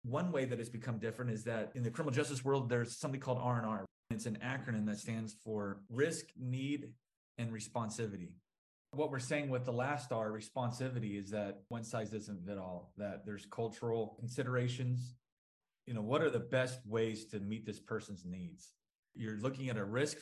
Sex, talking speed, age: male, 190 wpm, 30-49